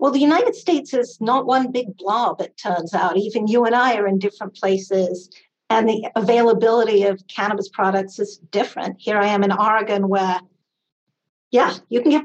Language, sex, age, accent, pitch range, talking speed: English, female, 50-69, American, 195-240 Hz, 185 wpm